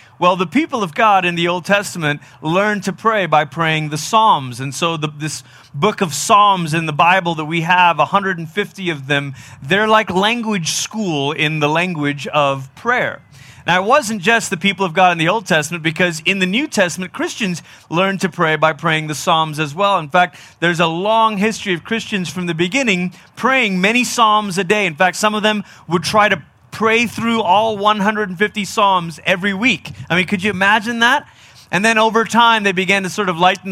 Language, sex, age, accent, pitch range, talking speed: English, male, 30-49, American, 160-210 Hz, 205 wpm